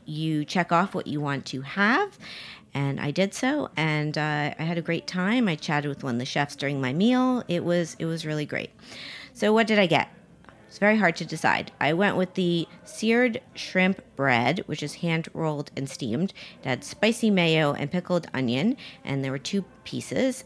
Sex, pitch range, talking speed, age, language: female, 145-190 Hz, 200 wpm, 40-59, English